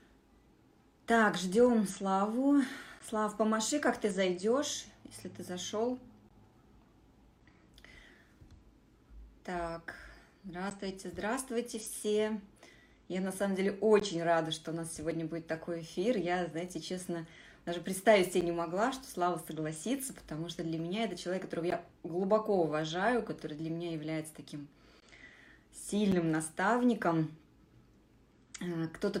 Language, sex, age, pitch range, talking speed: Russian, female, 20-39, 165-215 Hz, 115 wpm